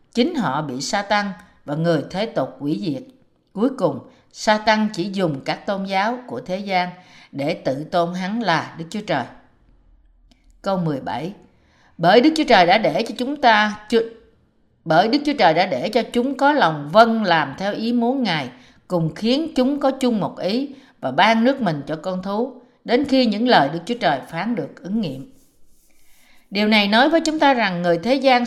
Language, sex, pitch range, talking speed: Vietnamese, female, 170-240 Hz, 200 wpm